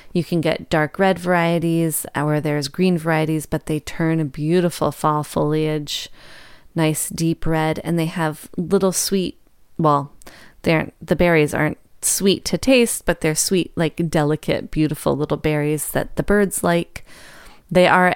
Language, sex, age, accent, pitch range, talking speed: English, female, 30-49, American, 155-180 Hz, 150 wpm